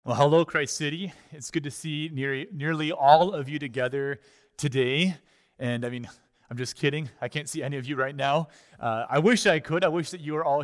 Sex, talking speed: male, 225 wpm